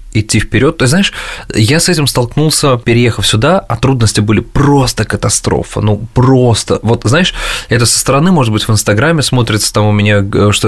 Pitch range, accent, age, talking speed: 95-120 Hz, native, 20-39, 180 wpm